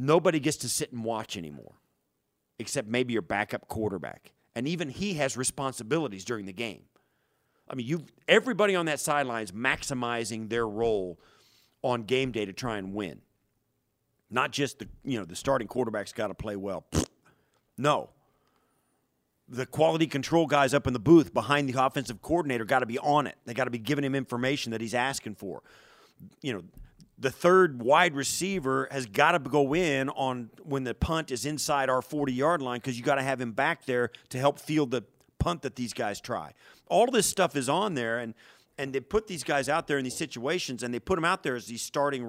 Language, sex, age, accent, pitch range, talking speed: English, male, 40-59, American, 120-150 Hz, 200 wpm